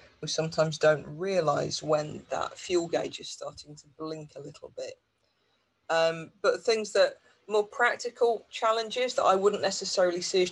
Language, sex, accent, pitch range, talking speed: English, female, British, 160-195 Hz, 160 wpm